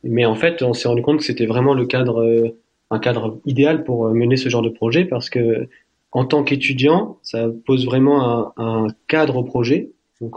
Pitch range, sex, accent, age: 115-140 Hz, male, French, 20-39